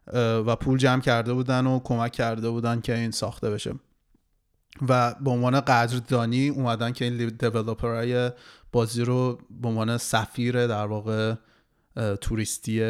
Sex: male